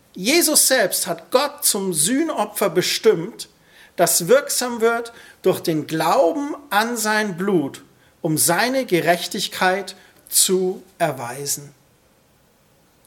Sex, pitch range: male, 185-245 Hz